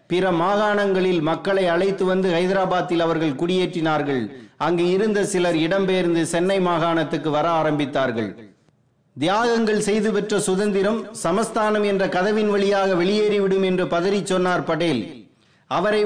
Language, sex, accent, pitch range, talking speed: Tamil, male, native, 175-205 Hz, 110 wpm